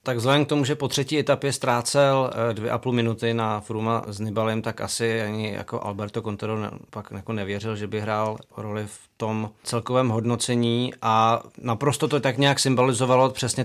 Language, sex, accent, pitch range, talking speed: Czech, male, native, 110-125 Hz, 175 wpm